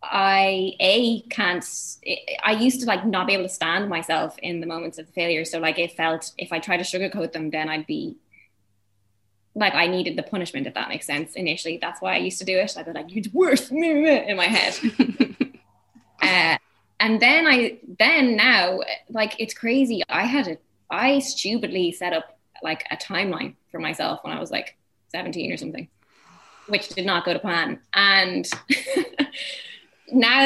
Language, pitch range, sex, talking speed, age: English, 170-235 Hz, female, 185 wpm, 10-29